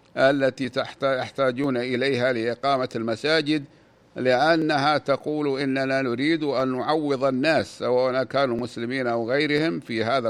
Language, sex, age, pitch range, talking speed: Arabic, male, 60-79, 130-155 Hz, 115 wpm